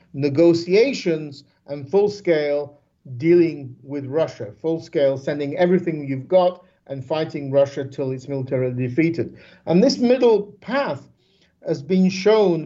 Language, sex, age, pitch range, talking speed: English, male, 50-69, 135-180 Hz, 130 wpm